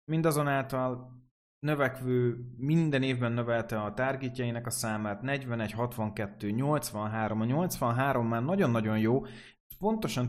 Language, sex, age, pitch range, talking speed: Hungarian, male, 30-49, 110-135 Hz, 110 wpm